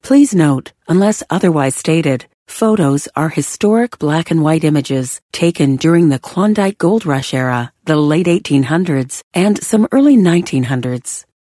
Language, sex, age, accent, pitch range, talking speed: English, female, 40-59, American, 145-210 Hz, 125 wpm